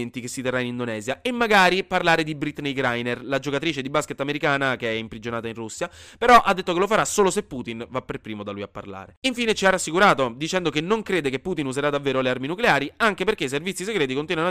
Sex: male